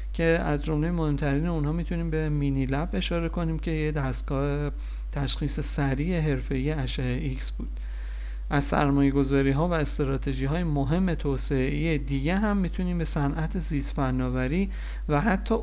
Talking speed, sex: 145 wpm, male